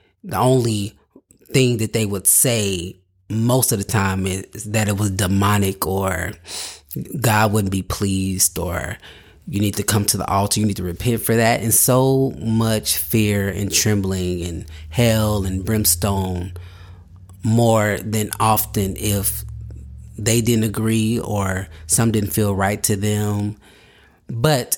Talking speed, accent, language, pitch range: 145 wpm, American, English, 95-115 Hz